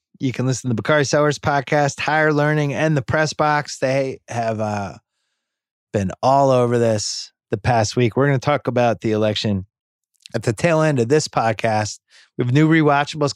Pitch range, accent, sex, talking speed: 105-135 Hz, American, male, 190 wpm